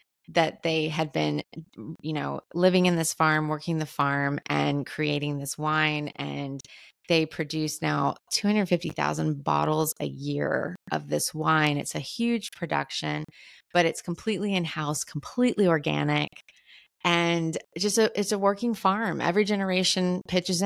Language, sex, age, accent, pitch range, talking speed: English, female, 20-39, American, 155-200 Hz, 140 wpm